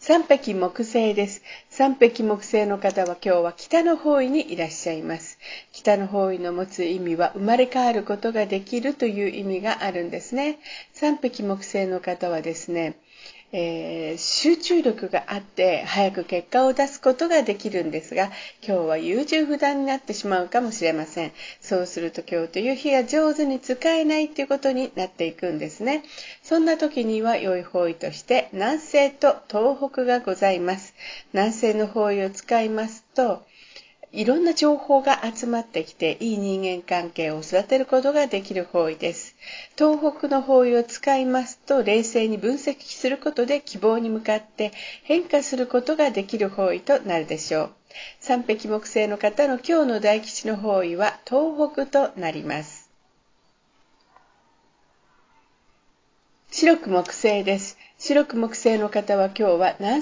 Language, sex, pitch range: Japanese, female, 185-275 Hz